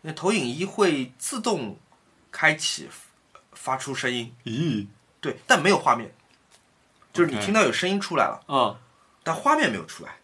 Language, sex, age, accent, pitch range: Chinese, male, 20-39, native, 115-175 Hz